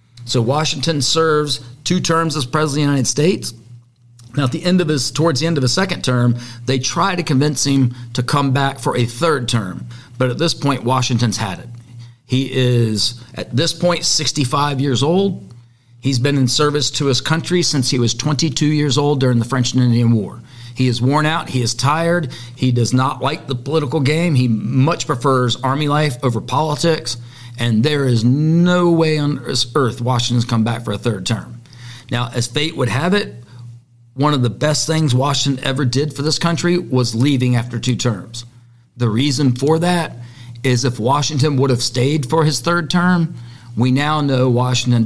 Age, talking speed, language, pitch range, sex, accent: 40-59, 185 wpm, English, 120-150 Hz, male, American